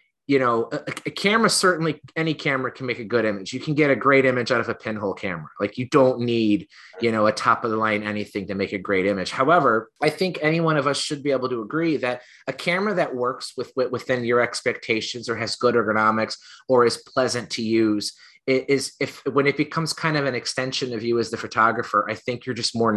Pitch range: 110-135 Hz